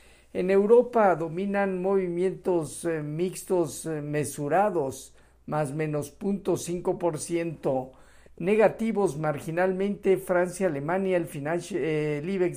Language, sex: Spanish, male